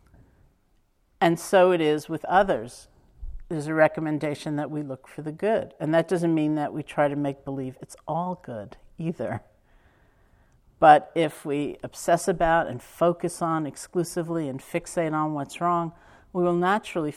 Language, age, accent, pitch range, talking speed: English, 50-69, American, 135-170 Hz, 160 wpm